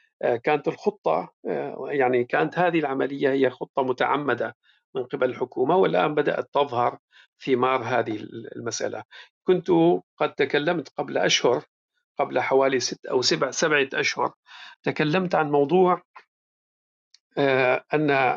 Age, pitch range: 50-69, 125-160 Hz